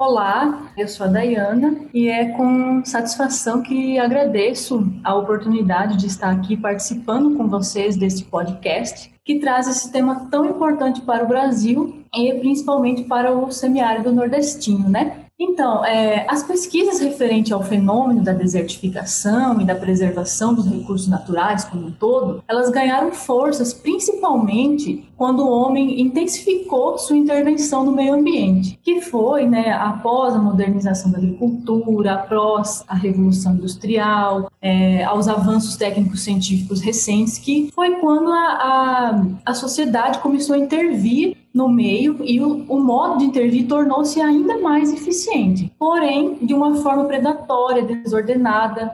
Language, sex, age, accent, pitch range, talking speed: Portuguese, female, 20-39, Brazilian, 210-280 Hz, 135 wpm